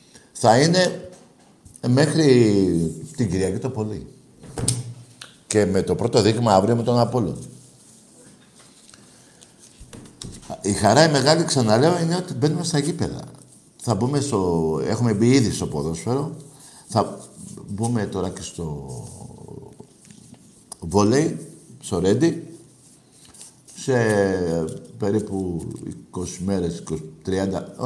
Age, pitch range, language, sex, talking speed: 60-79, 95-130 Hz, Greek, male, 100 wpm